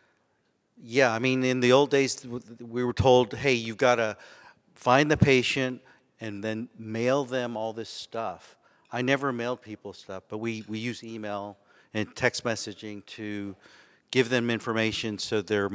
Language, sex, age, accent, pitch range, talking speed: English, male, 50-69, American, 110-125 Hz, 165 wpm